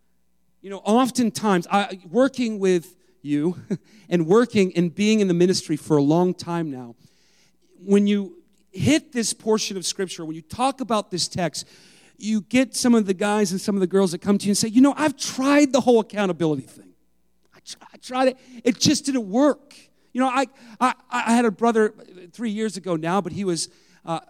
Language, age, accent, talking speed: English, 40-59, American, 200 wpm